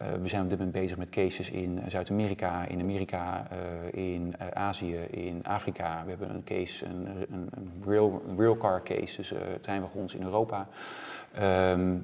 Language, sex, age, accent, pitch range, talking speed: Dutch, male, 30-49, Dutch, 90-105 Hz, 175 wpm